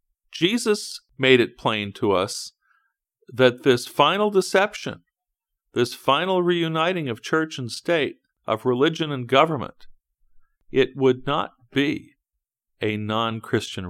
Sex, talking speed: male, 115 wpm